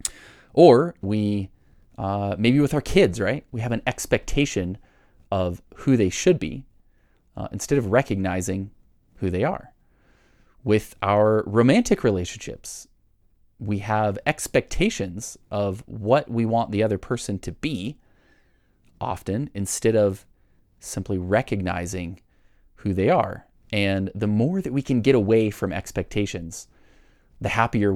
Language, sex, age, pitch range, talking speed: English, male, 30-49, 95-110 Hz, 130 wpm